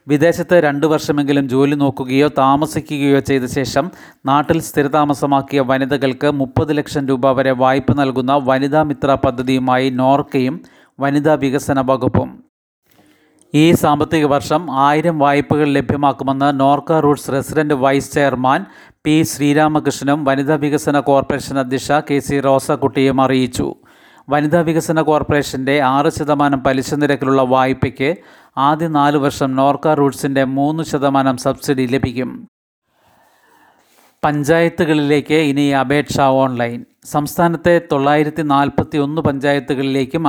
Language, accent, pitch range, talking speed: Malayalam, native, 135-150 Hz, 100 wpm